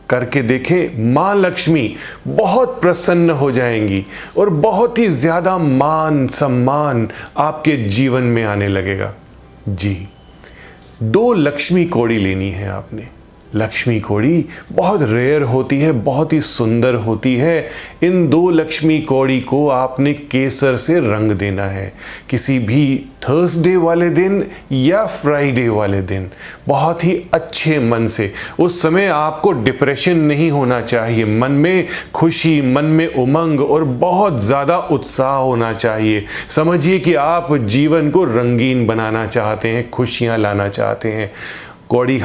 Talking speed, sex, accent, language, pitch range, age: 135 wpm, male, native, Hindi, 115-160 Hz, 20-39